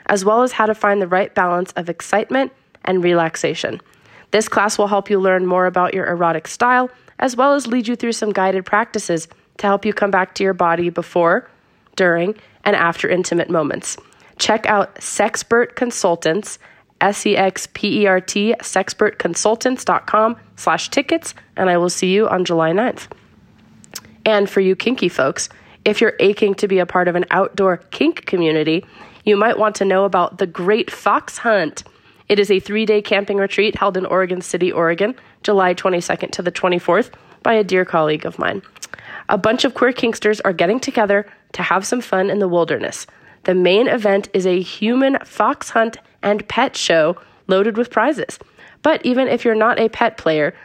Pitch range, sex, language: 185-220 Hz, female, English